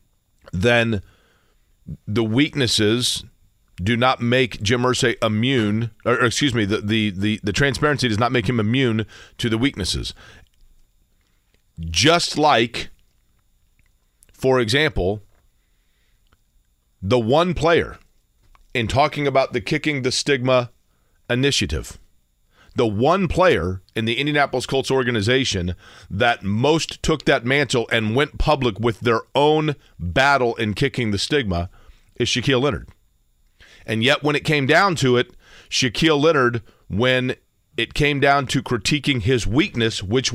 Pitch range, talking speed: 105-140 Hz, 130 wpm